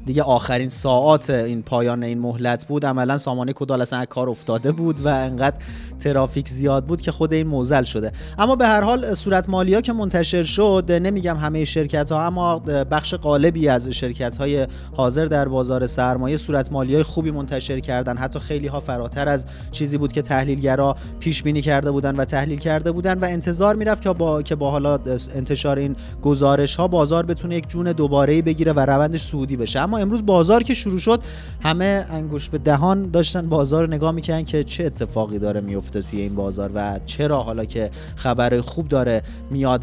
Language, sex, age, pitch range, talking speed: Persian, male, 30-49, 125-160 Hz, 185 wpm